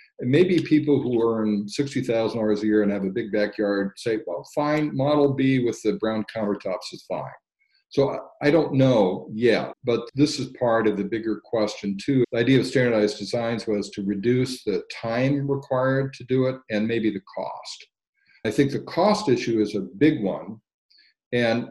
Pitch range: 105-130 Hz